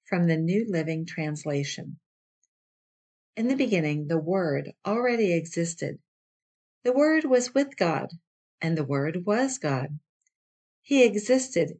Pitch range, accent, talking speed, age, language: 160-220 Hz, American, 120 wpm, 50-69, English